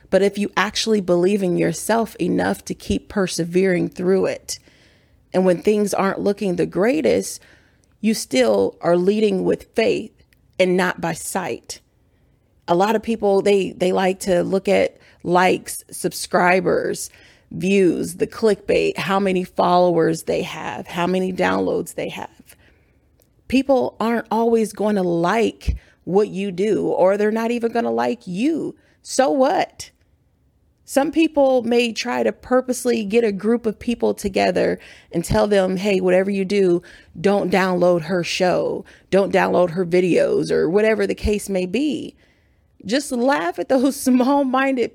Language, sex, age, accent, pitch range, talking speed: English, female, 30-49, American, 185-245 Hz, 150 wpm